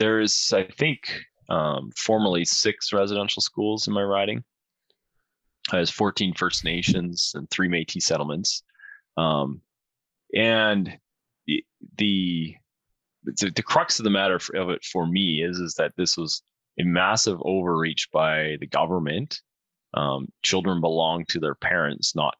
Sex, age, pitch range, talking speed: male, 20-39, 80-100 Hz, 140 wpm